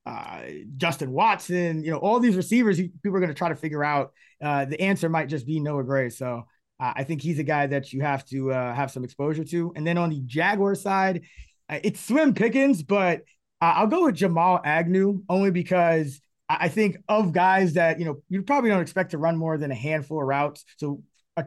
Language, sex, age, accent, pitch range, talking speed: English, male, 20-39, American, 145-180 Hz, 230 wpm